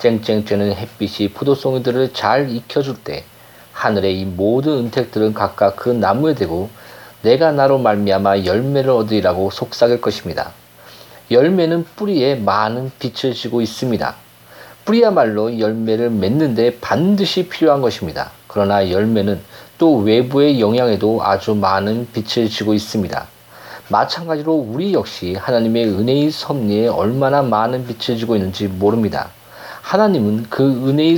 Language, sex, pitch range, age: Korean, male, 105-145 Hz, 40-59